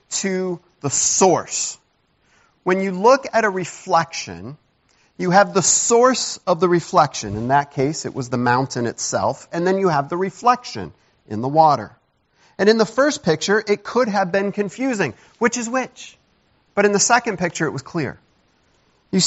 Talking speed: 170 wpm